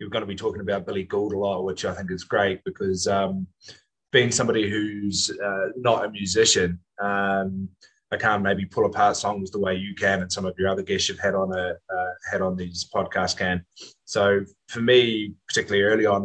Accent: Australian